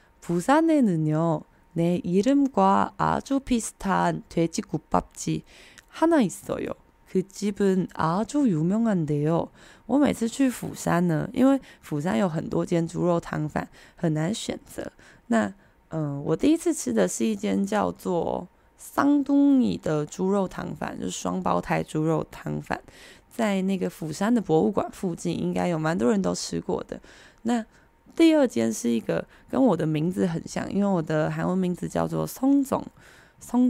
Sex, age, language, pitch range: female, 20-39, Chinese, 160-240 Hz